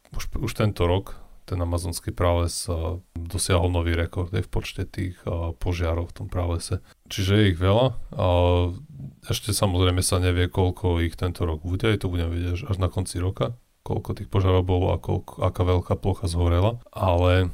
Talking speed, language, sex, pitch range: 165 wpm, Slovak, male, 85-95 Hz